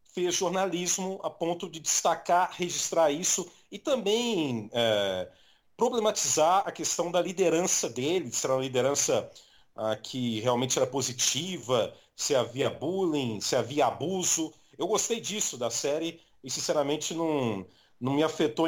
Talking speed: 140 wpm